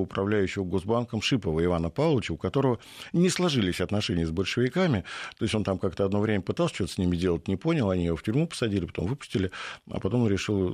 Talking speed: 200 wpm